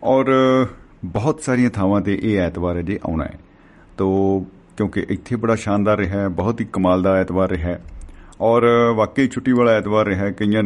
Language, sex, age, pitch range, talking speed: Punjabi, male, 50-69, 90-110 Hz, 185 wpm